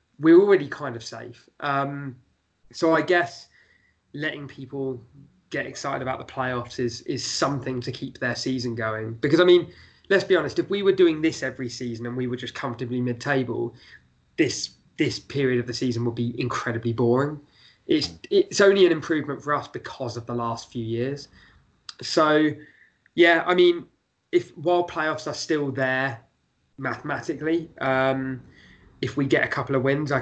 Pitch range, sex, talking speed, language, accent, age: 120-150 Hz, male, 175 wpm, English, British, 20-39